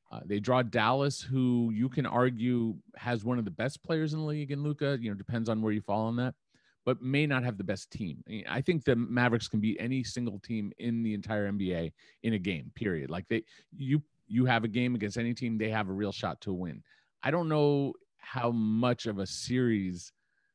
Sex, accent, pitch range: male, American, 100-125 Hz